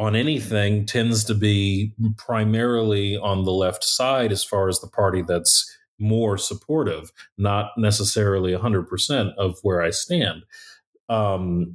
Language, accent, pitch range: English, American, 95-120 Hz